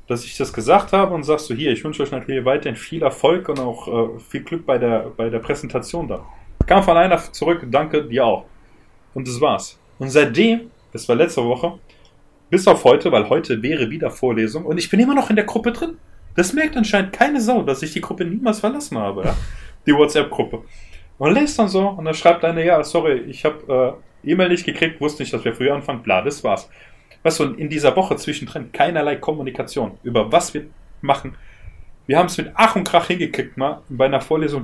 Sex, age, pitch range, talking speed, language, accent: male, 30-49, 120-170 Hz, 215 wpm, German, German